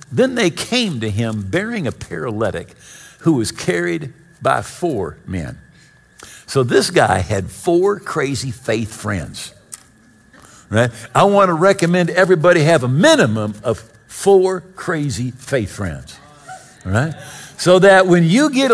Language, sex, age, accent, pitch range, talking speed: English, male, 60-79, American, 130-200 Hz, 135 wpm